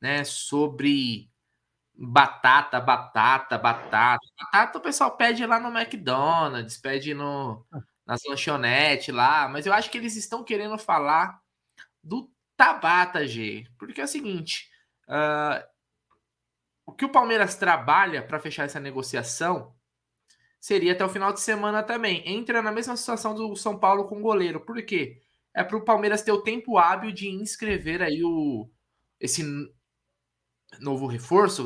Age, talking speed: 20-39, 140 wpm